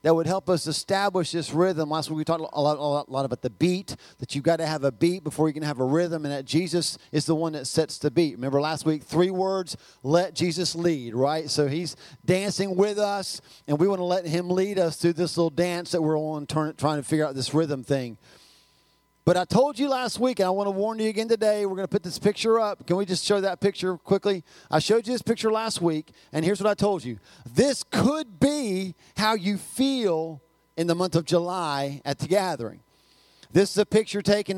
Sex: male